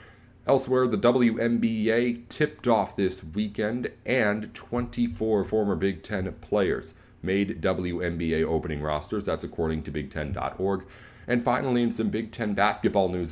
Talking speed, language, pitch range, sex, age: 135 wpm, English, 90-115 Hz, male, 30-49